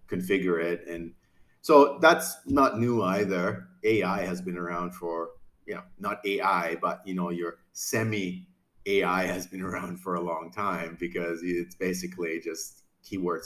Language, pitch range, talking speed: English, 90-120 Hz, 160 wpm